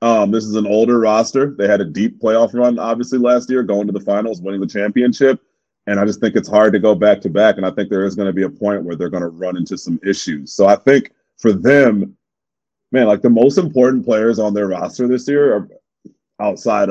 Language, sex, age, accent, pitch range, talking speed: English, male, 30-49, American, 95-120 Hz, 245 wpm